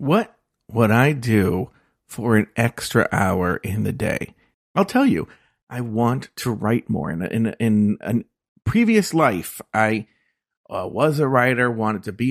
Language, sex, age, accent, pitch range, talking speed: English, male, 40-59, American, 110-150 Hz, 160 wpm